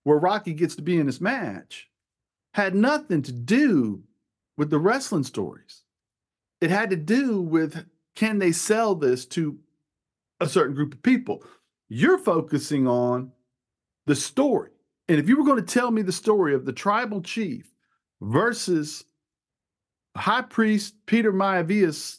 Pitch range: 145-225 Hz